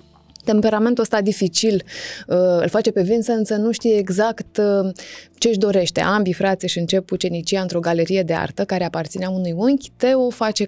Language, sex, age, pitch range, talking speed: Romanian, female, 20-39, 180-225 Hz, 175 wpm